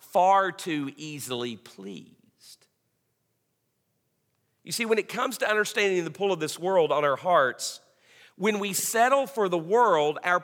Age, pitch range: 50-69, 150-210 Hz